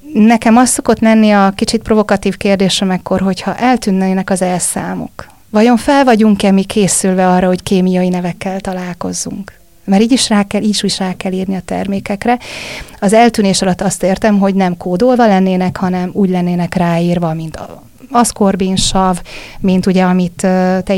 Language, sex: Hungarian, female